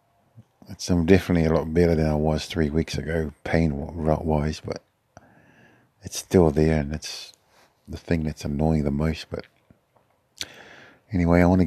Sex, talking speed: male, 150 wpm